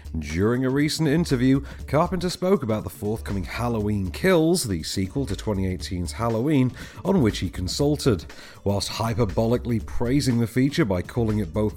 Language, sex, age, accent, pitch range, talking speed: English, male, 40-59, British, 95-135 Hz, 150 wpm